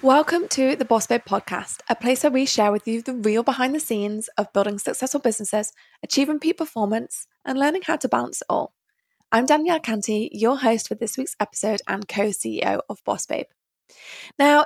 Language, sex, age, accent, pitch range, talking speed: English, female, 20-39, British, 215-275 Hz, 190 wpm